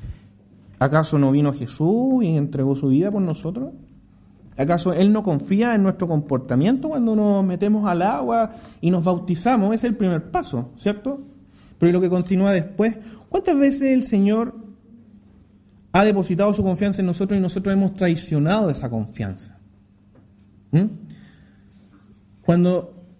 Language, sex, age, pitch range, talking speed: English, male, 30-49, 135-215 Hz, 135 wpm